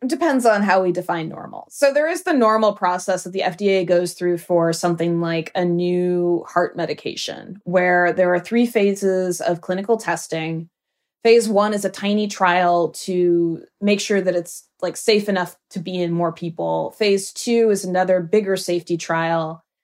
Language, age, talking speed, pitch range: English, 20-39, 180 wpm, 170-205 Hz